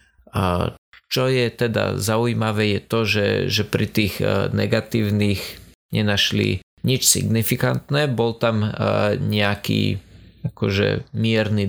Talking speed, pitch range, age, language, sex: 105 wpm, 100-115 Hz, 20-39, Slovak, male